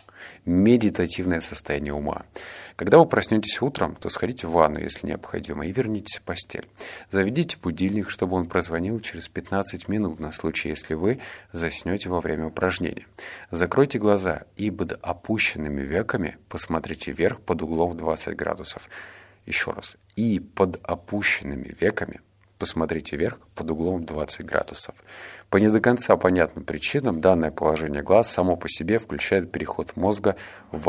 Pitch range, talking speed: 85-105 Hz, 140 wpm